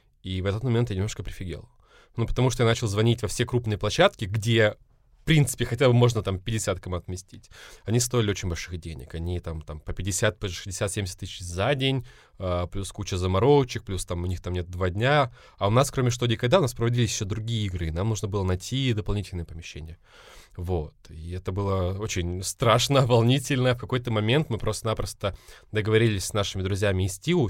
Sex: male